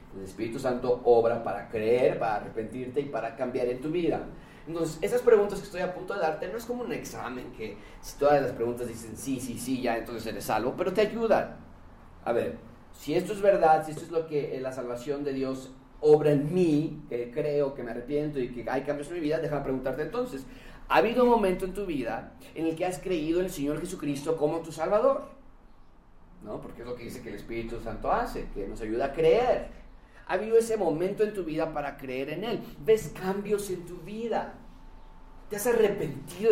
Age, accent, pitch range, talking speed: 30-49, Mexican, 135-205 Hz, 215 wpm